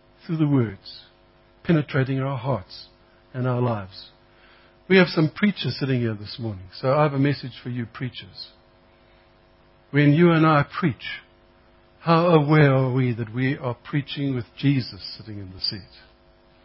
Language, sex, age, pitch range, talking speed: English, male, 60-79, 110-160 Hz, 160 wpm